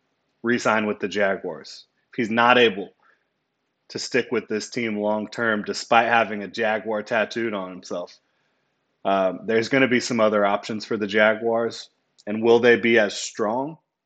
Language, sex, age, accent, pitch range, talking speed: English, male, 30-49, American, 100-120 Hz, 160 wpm